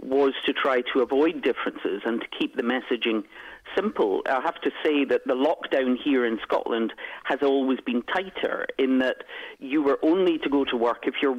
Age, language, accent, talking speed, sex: 40-59, English, British, 195 wpm, male